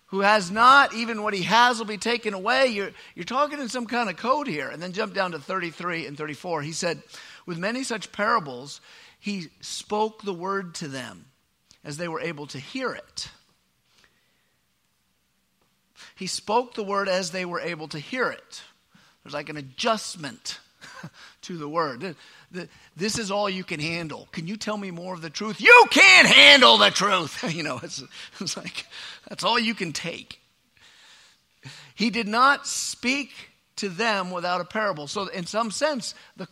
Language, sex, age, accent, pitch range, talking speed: English, male, 50-69, American, 155-225 Hz, 175 wpm